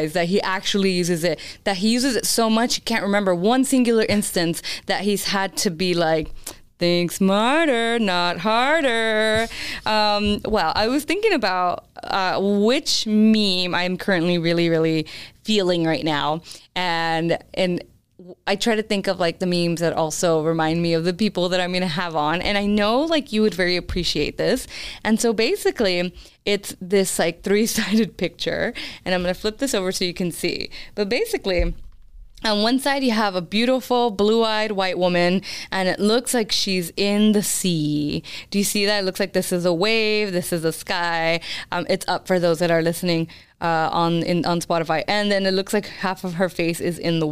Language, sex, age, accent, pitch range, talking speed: English, female, 20-39, American, 175-215 Hz, 195 wpm